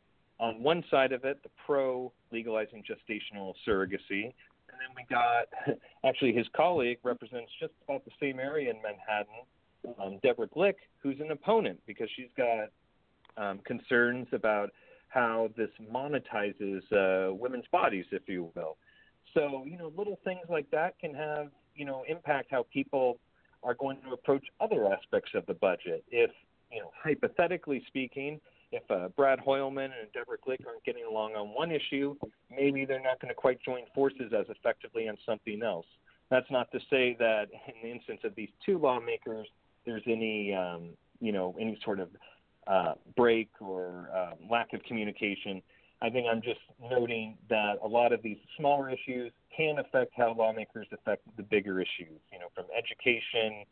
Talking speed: 170 wpm